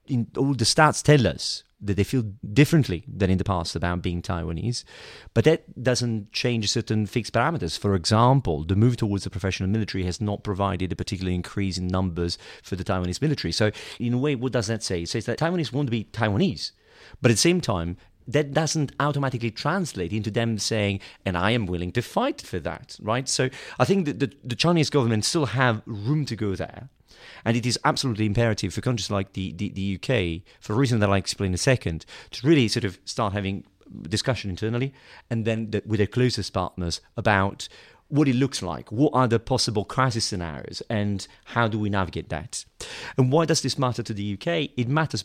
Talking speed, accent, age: 205 wpm, British, 40-59